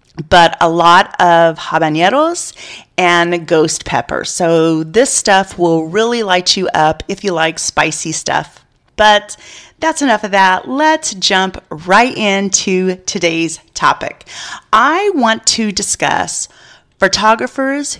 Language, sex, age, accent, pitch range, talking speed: English, female, 30-49, American, 175-235 Hz, 125 wpm